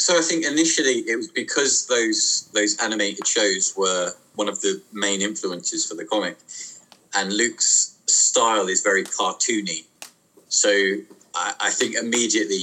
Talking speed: 145 wpm